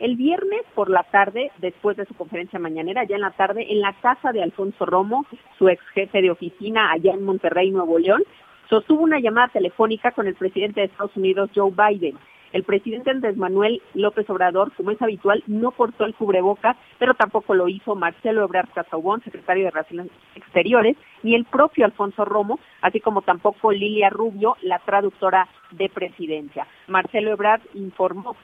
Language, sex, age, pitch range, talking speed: Spanish, female, 40-59, 185-225 Hz, 175 wpm